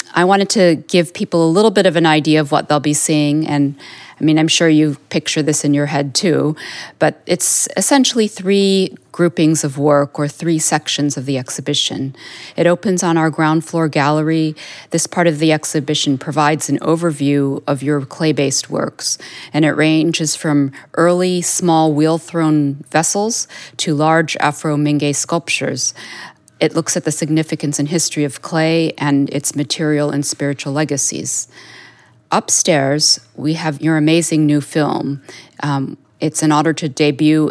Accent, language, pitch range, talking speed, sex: American, English, 145-160 Hz, 165 wpm, female